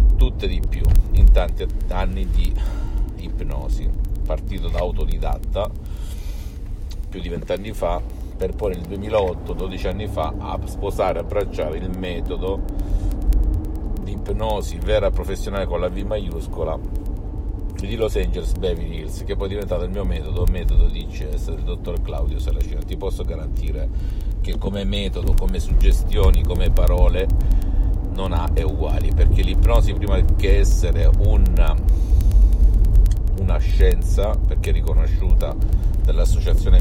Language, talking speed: Italian, 135 wpm